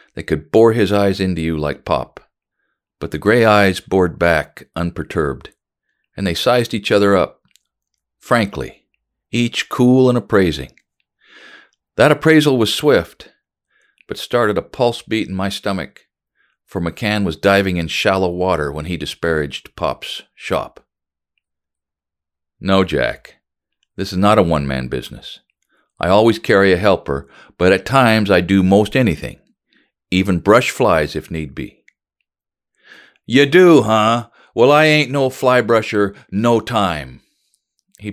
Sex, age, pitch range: male, 50-69, 85-125 Hz